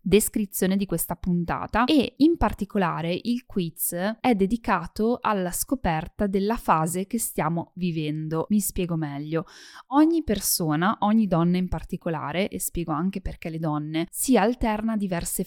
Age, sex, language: 10-29, female, Italian